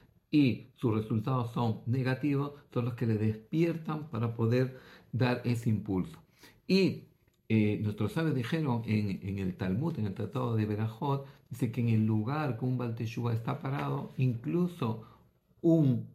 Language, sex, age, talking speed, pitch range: Greek, male, 50-69, 150 wpm, 110-135 Hz